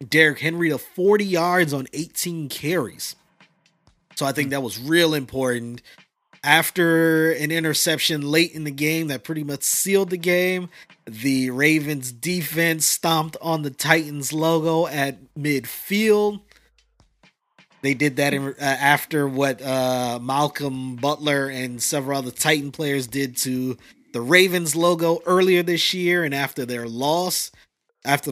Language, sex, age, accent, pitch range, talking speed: English, male, 20-39, American, 135-165 Hz, 140 wpm